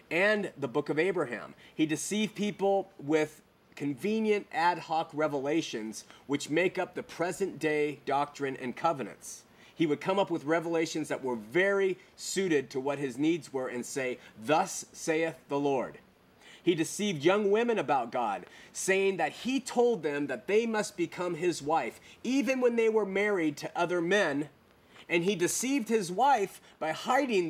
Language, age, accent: English, 30-49, American